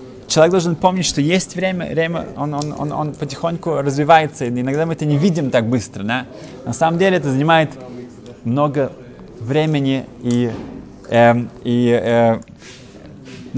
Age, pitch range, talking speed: 20-39, 115-150 Hz, 140 wpm